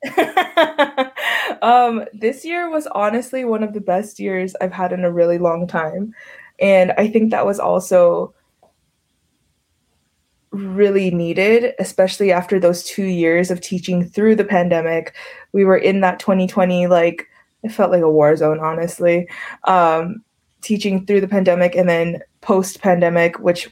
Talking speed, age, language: 145 wpm, 20-39, English